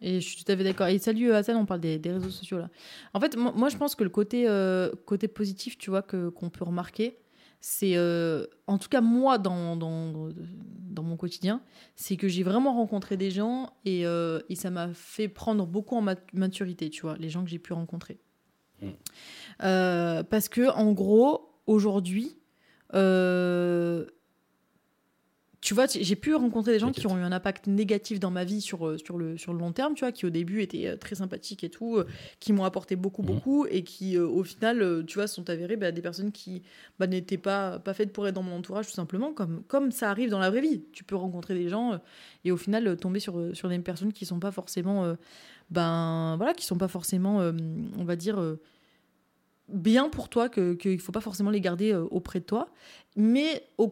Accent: French